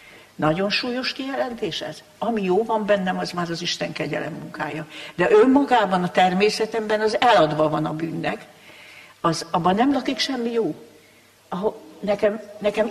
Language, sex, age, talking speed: Hungarian, female, 60-79, 150 wpm